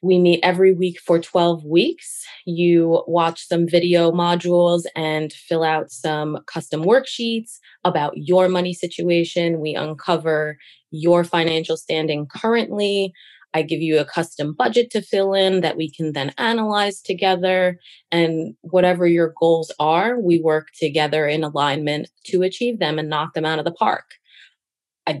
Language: English